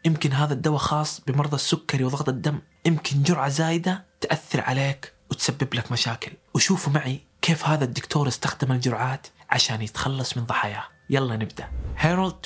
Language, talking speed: Arabic, 145 wpm